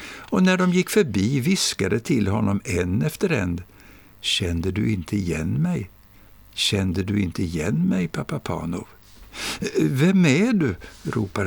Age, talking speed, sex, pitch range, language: 60-79, 140 wpm, male, 90-120 Hz, Swedish